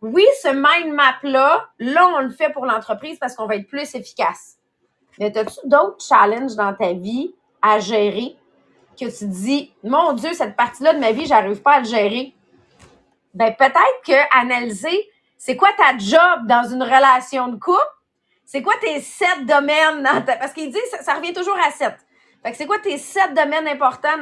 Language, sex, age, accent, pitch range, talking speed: English, female, 30-49, Canadian, 230-310 Hz, 200 wpm